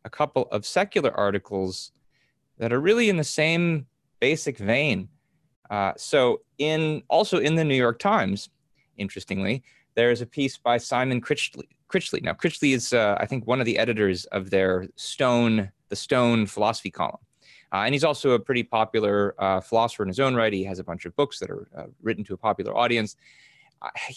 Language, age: English, 30-49